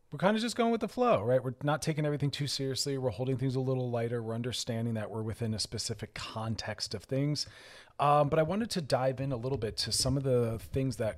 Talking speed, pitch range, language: 250 wpm, 110-140 Hz, English